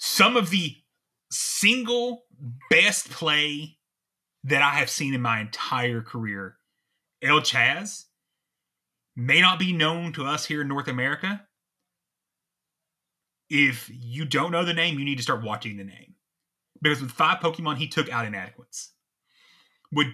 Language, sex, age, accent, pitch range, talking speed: English, male, 30-49, American, 130-175 Hz, 145 wpm